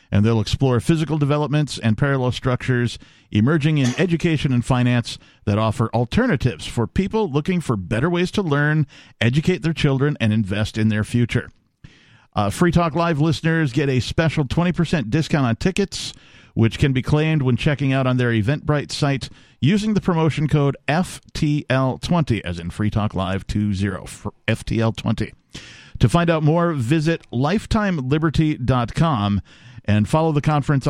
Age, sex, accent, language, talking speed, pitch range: 50-69, male, American, English, 155 wpm, 115-160 Hz